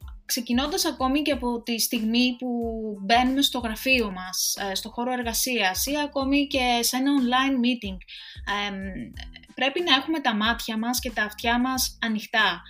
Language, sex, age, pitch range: Greek, female, 20-39, 210-265 Hz